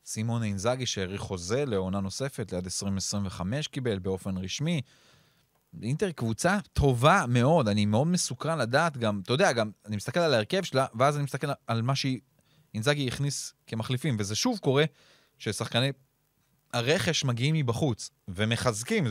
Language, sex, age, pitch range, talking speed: Hebrew, male, 20-39, 110-150 Hz, 140 wpm